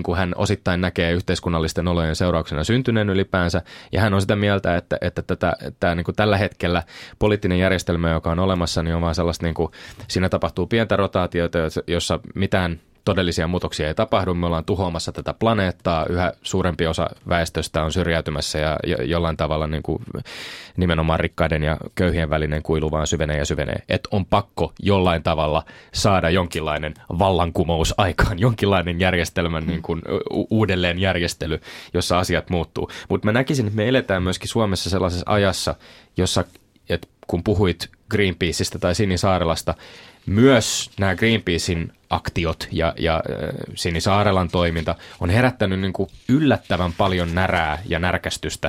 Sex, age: male, 20-39